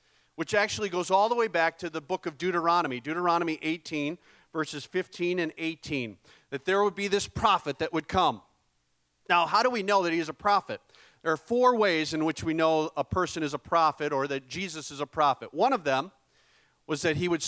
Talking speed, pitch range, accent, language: 215 wpm, 150-195 Hz, American, English